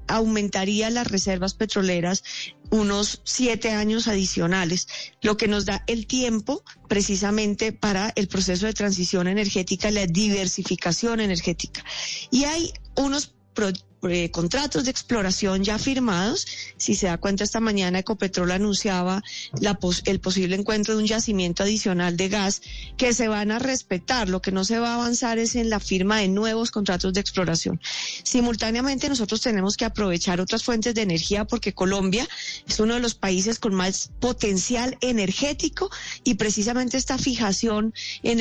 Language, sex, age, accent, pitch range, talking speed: Spanish, female, 30-49, Colombian, 195-235 Hz, 150 wpm